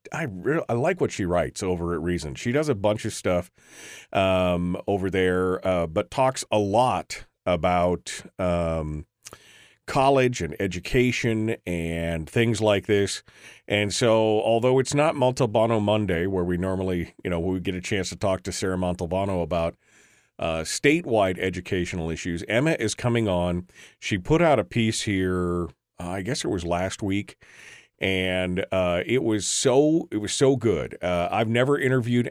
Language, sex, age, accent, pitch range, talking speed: English, male, 40-59, American, 90-115 Hz, 165 wpm